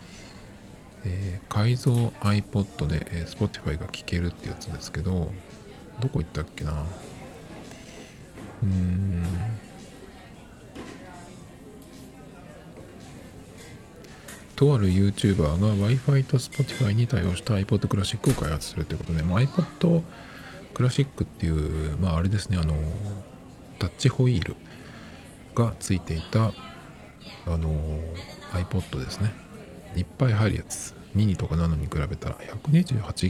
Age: 50-69